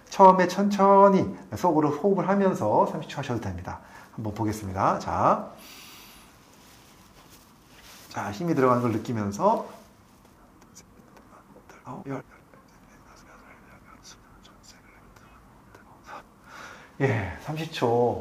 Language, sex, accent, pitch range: Korean, male, native, 120-185 Hz